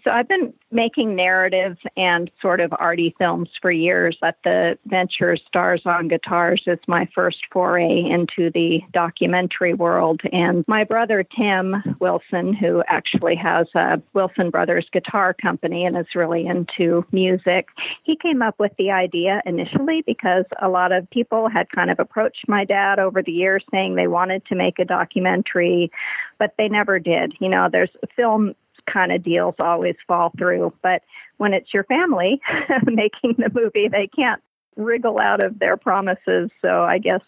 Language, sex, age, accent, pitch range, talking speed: English, female, 50-69, American, 175-205 Hz, 170 wpm